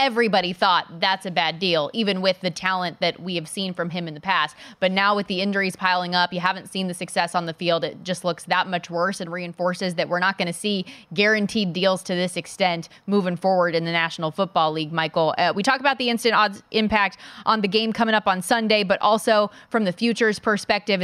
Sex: female